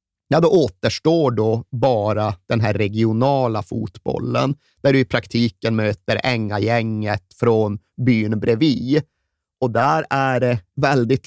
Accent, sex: native, male